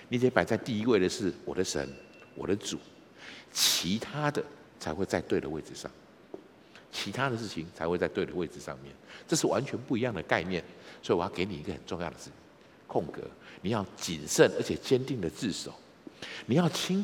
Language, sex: Chinese, male